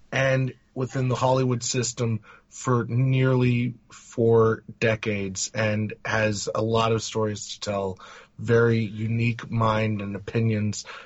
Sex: male